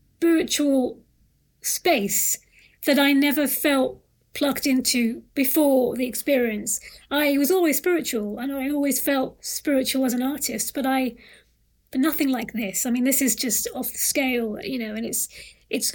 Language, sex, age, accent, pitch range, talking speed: English, female, 30-49, British, 245-290 Hz, 160 wpm